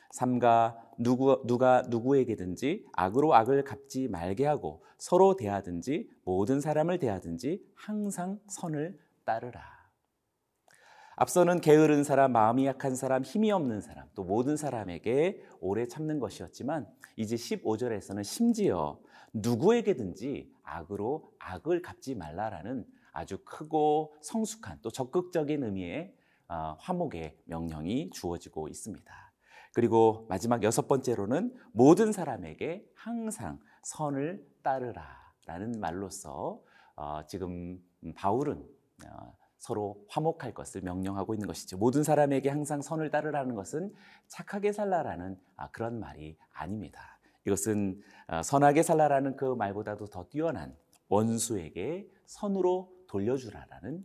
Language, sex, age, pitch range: Korean, male, 40-59, 100-155 Hz